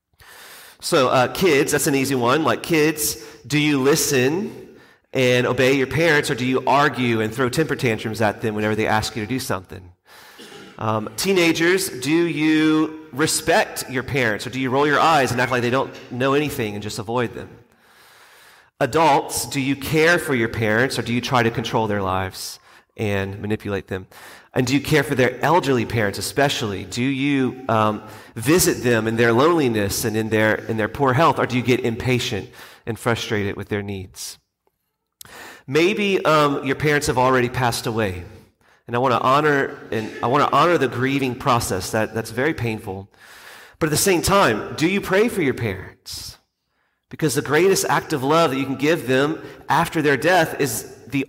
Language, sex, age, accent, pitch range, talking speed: English, male, 30-49, American, 110-145 Hz, 185 wpm